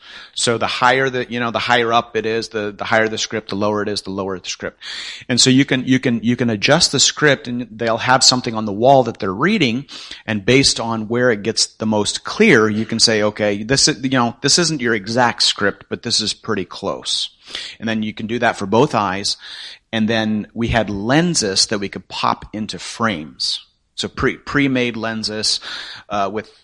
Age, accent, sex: 30-49, American, male